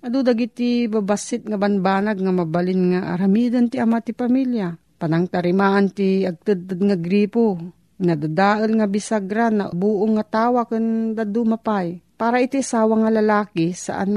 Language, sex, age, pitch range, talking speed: Filipino, female, 40-59, 180-225 Hz, 140 wpm